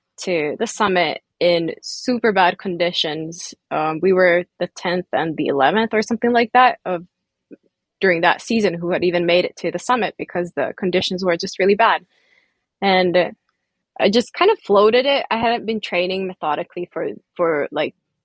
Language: English